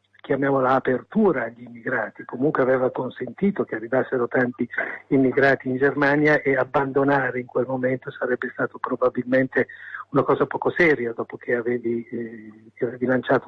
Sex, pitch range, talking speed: male, 120-140 Hz, 145 wpm